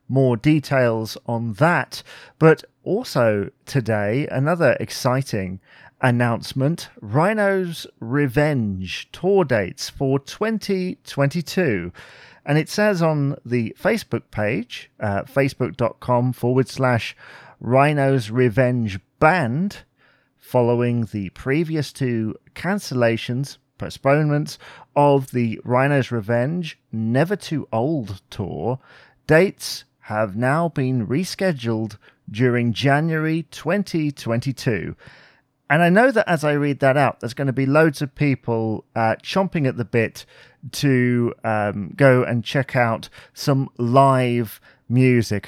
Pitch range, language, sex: 115-150 Hz, English, male